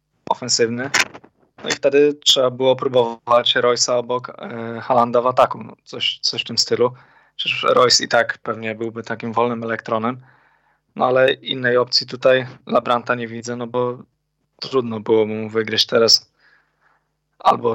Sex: male